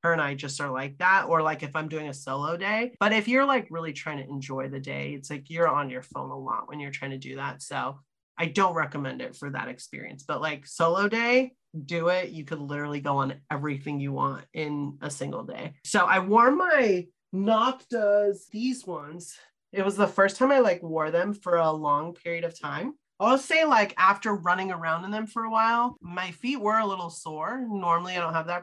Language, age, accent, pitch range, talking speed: English, 30-49, American, 145-200 Hz, 230 wpm